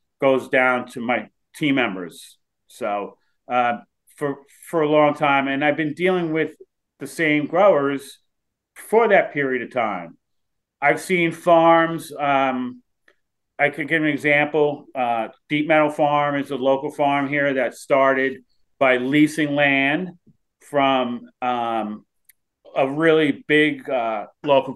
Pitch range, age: 130-150 Hz, 40-59